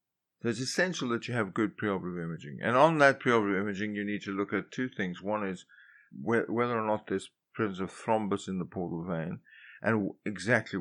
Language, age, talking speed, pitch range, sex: English, 50-69, 210 wpm, 95-115 Hz, male